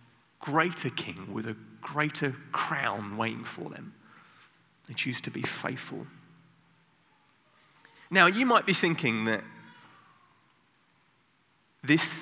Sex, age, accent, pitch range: male, 30-49, British, 110-155 Hz